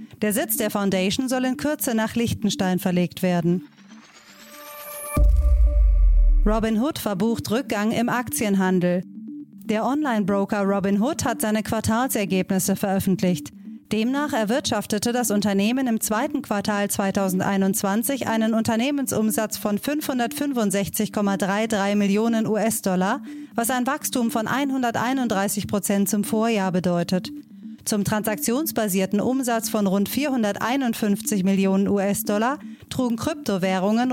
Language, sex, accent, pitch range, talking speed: German, female, German, 200-245 Hz, 100 wpm